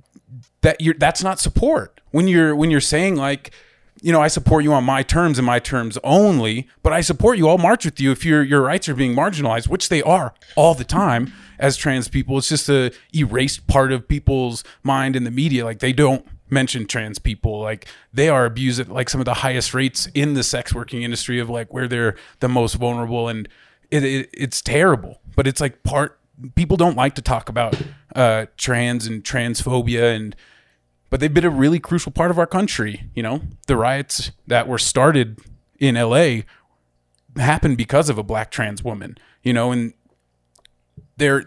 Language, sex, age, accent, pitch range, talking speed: English, male, 30-49, American, 115-140 Hz, 200 wpm